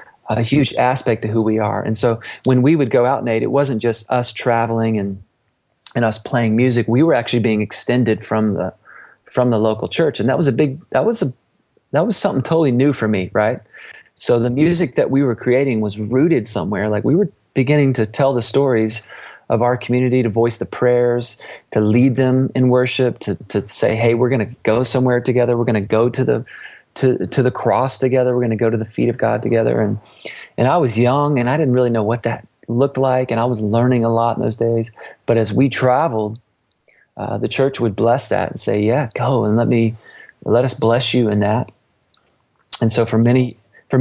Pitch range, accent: 110-130 Hz, American